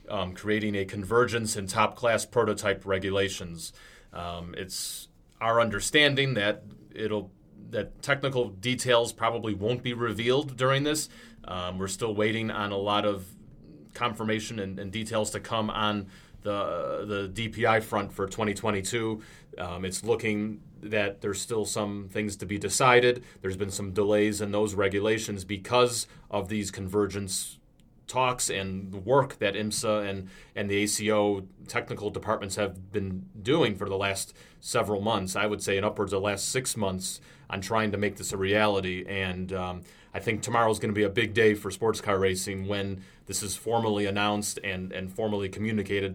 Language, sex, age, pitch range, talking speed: English, male, 30-49, 100-110 Hz, 165 wpm